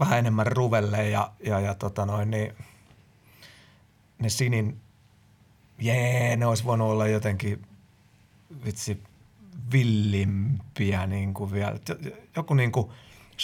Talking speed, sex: 110 wpm, male